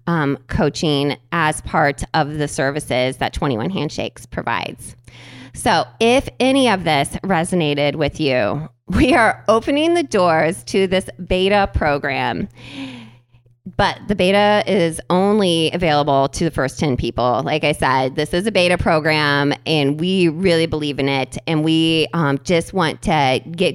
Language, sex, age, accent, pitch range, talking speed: English, female, 20-39, American, 140-205 Hz, 150 wpm